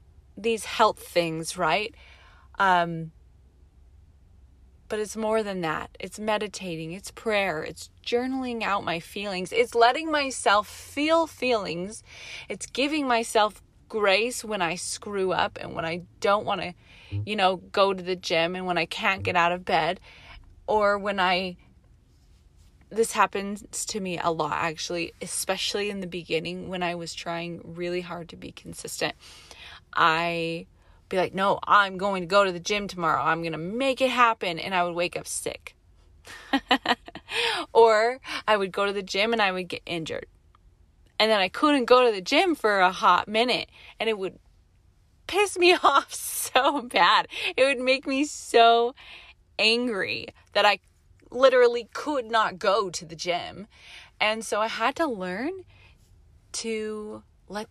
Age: 20-39